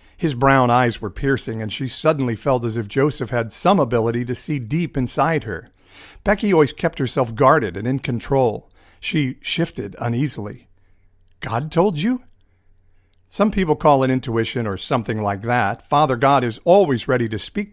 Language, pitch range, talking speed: English, 105-140 Hz, 170 wpm